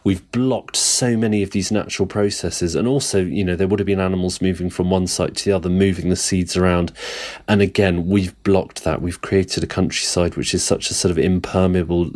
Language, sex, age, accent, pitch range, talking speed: English, male, 30-49, British, 90-105 Hz, 215 wpm